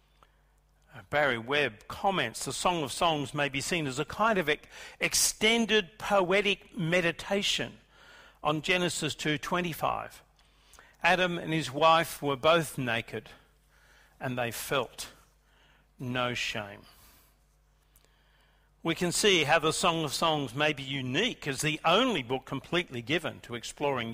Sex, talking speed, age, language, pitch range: male, 125 wpm, 50-69, English, 135-185 Hz